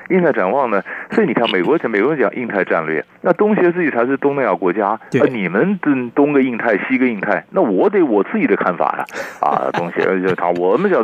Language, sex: Chinese, male